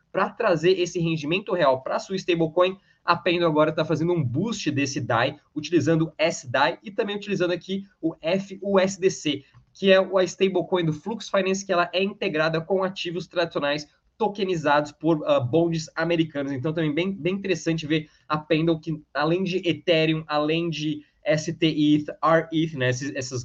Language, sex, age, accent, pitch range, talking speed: Portuguese, male, 20-39, Brazilian, 140-175 Hz, 165 wpm